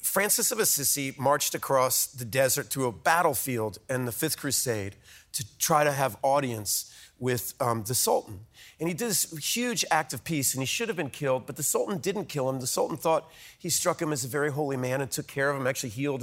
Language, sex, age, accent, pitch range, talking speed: English, male, 40-59, American, 130-185 Hz, 225 wpm